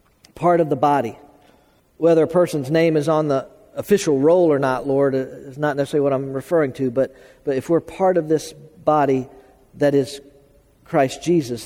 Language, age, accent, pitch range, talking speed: English, 50-69, American, 130-160 Hz, 180 wpm